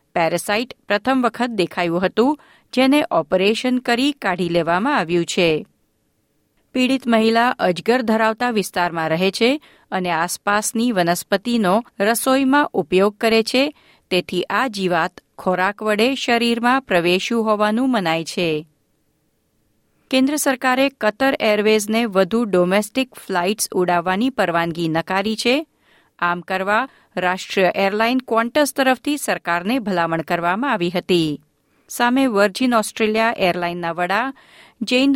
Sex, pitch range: female, 180-245 Hz